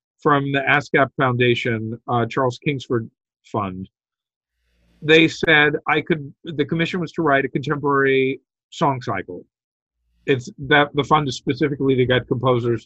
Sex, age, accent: male, 50-69, American